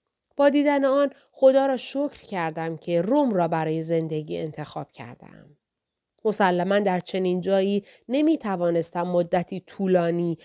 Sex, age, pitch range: female, 30-49, 175-235 Hz